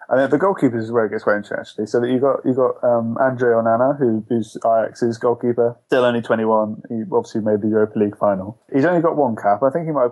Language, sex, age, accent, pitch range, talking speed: English, male, 20-39, British, 110-125 Hz, 255 wpm